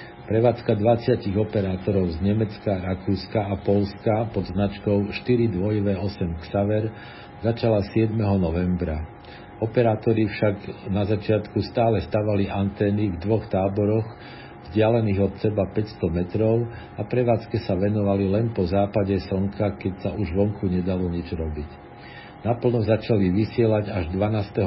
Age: 50-69